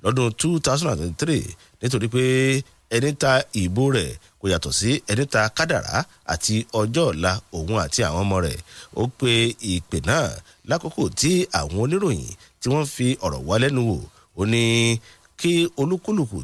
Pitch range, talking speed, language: 110-155 Hz, 120 wpm, English